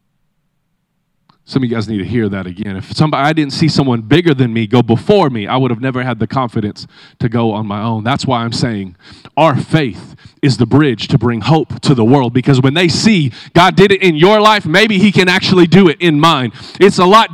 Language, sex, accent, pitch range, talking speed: English, male, American, 145-215 Hz, 240 wpm